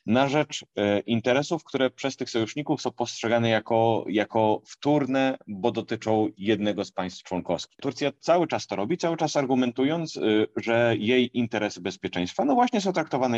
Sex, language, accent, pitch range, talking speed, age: male, Polish, native, 90-115 Hz, 150 wpm, 30-49